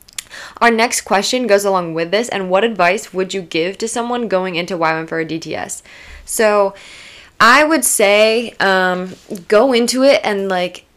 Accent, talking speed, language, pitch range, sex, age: American, 170 wpm, English, 180-210 Hz, female, 20-39